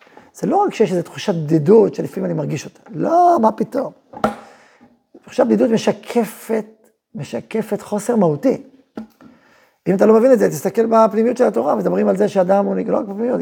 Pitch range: 180-240 Hz